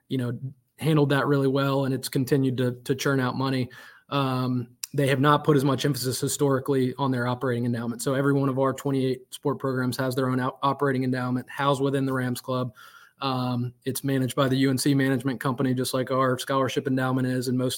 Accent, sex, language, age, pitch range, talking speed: American, male, English, 20-39, 125-140 Hz, 205 wpm